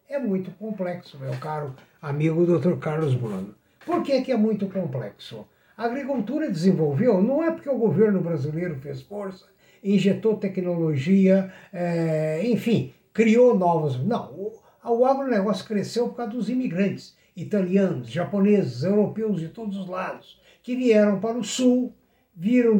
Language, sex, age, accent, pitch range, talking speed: Portuguese, male, 60-79, Brazilian, 175-240 Hz, 140 wpm